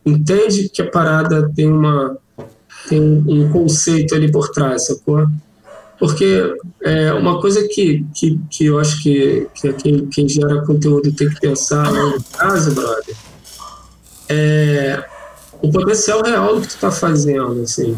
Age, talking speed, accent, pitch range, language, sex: 20-39, 145 wpm, Brazilian, 145-175 Hz, Portuguese, male